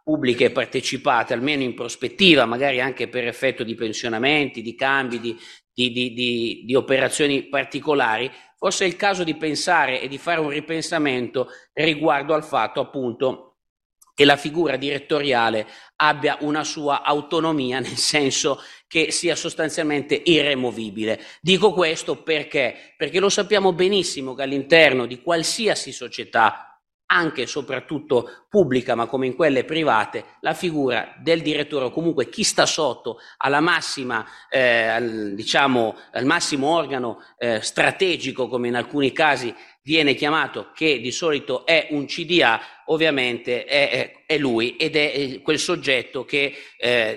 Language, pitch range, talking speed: Italian, 125-160 Hz, 140 wpm